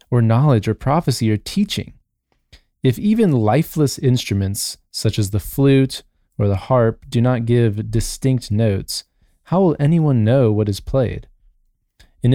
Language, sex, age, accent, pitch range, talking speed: English, male, 20-39, American, 105-145 Hz, 145 wpm